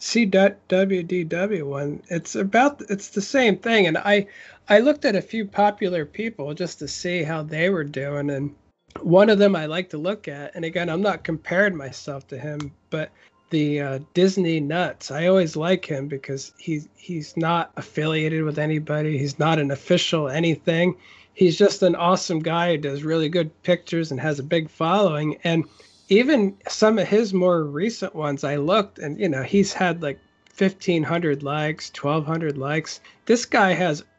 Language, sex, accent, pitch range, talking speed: English, male, American, 155-195 Hz, 175 wpm